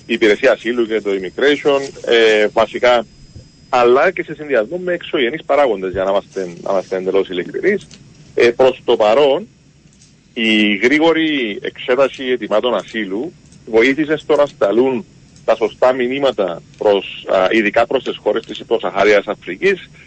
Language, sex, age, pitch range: Greek, male, 40-59, 110-150 Hz